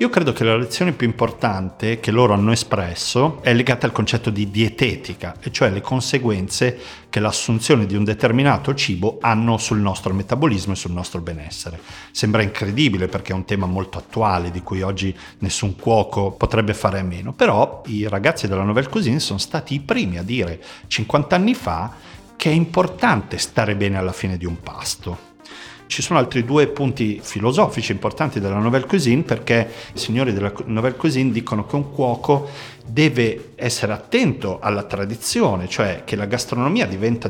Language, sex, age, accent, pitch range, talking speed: Italian, male, 40-59, native, 100-130 Hz, 170 wpm